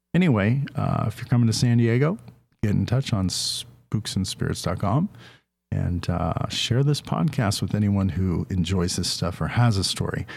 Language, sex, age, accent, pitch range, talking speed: English, male, 40-59, American, 100-130 Hz, 160 wpm